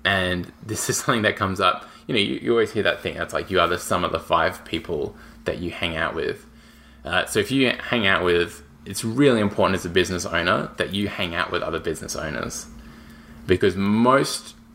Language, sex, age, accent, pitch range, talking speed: English, male, 20-39, Australian, 90-110 Hz, 220 wpm